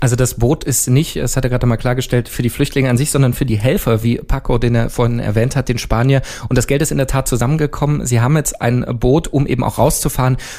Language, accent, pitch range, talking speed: German, German, 110-130 Hz, 260 wpm